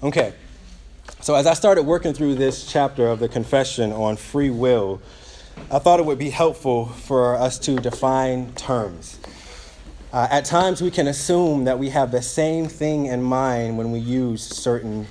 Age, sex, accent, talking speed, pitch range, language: 20-39, male, American, 175 wpm, 115-145 Hz, English